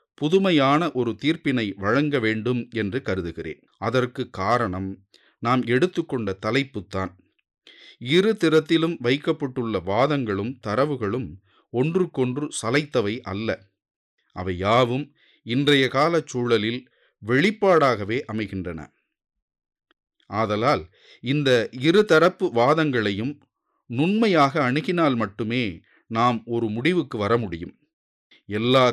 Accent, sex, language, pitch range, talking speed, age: Indian, male, English, 110-145 Hz, 85 wpm, 40-59